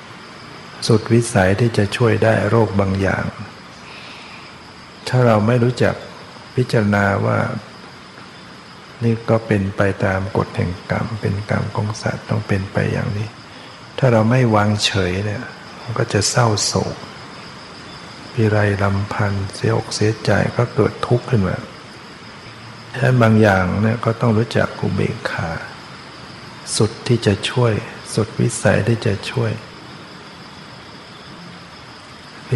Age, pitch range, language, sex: 60-79, 100-115 Hz, Thai, male